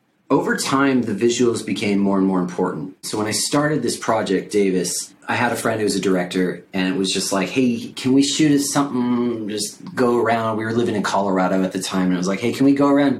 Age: 30-49